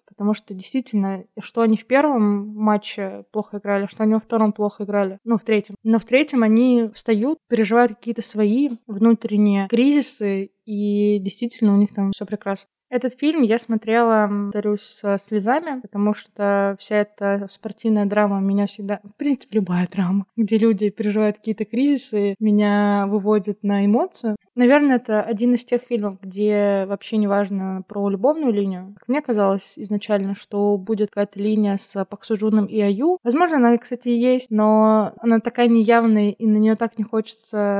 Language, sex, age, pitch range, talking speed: Russian, female, 20-39, 205-235 Hz, 165 wpm